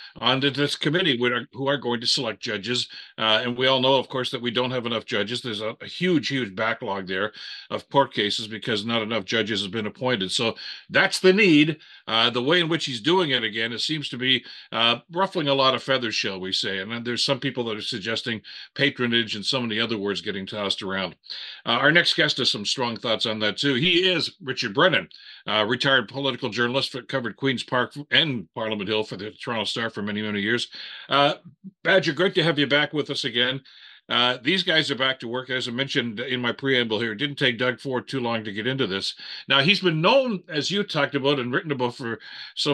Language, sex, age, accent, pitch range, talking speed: English, male, 50-69, American, 115-145 Hz, 230 wpm